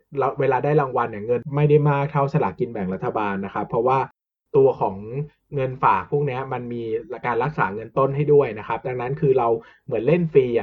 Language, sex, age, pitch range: Thai, male, 20-39, 125-160 Hz